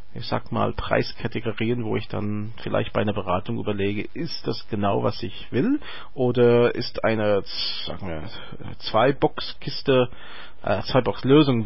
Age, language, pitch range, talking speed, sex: 40-59, German, 110-140 Hz, 145 wpm, male